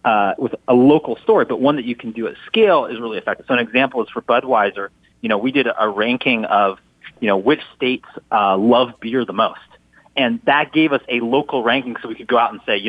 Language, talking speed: English, 245 wpm